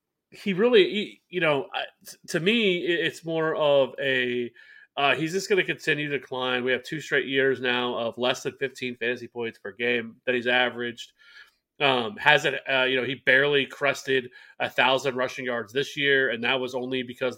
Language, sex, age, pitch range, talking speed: English, male, 30-49, 125-150 Hz, 190 wpm